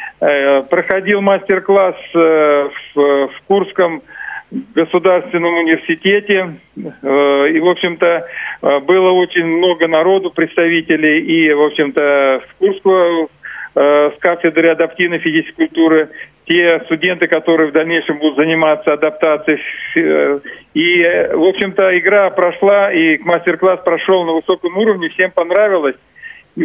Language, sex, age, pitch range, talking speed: Russian, male, 40-59, 165-190 Hz, 105 wpm